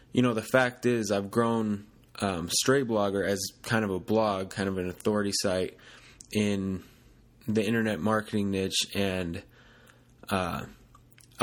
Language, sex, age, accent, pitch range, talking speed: English, male, 20-39, American, 105-120 Hz, 140 wpm